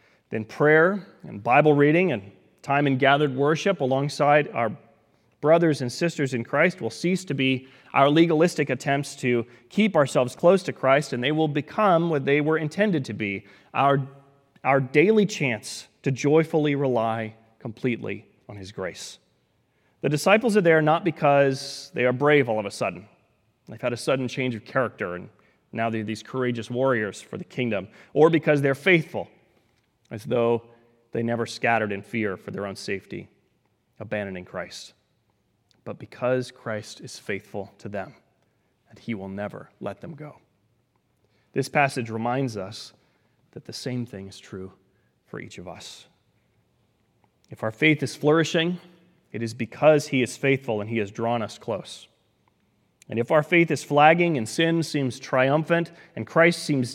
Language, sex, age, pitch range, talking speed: English, male, 30-49, 115-155 Hz, 165 wpm